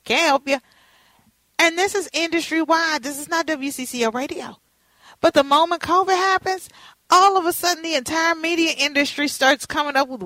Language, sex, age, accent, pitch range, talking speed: English, female, 40-59, American, 235-325 Hz, 170 wpm